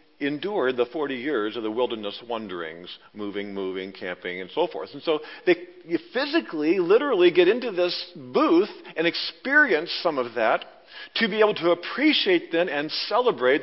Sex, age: male, 50-69